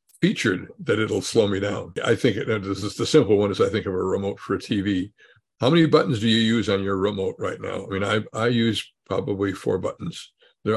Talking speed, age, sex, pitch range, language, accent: 240 wpm, 60-79, male, 100-125 Hz, English, American